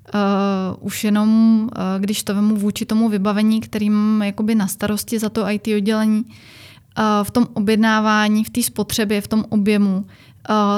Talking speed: 160 wpm